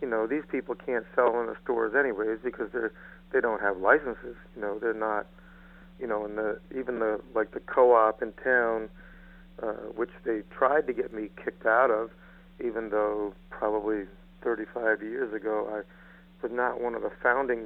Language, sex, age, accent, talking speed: English, male, 50-69, American, 185 wpm